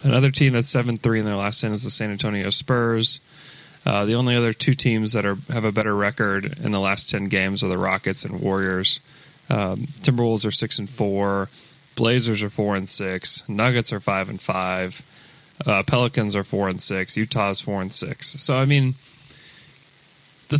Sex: male